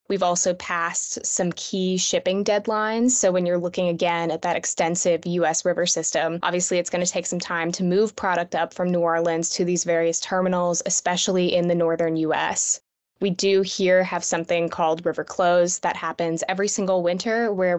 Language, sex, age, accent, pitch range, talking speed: English, female, 20-39, American, 170-200 Hz, 185 wpm